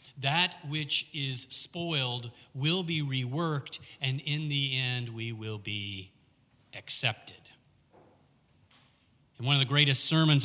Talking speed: 120 wpm